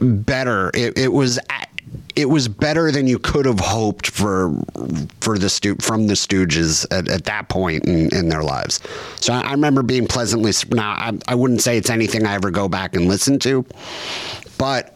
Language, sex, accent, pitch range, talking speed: English, male, American, 95-120 Hz, 190 wpm